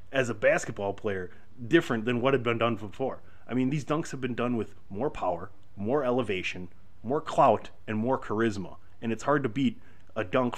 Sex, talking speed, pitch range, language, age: male, 200 wpm, 95-130 Hz, English, 30-49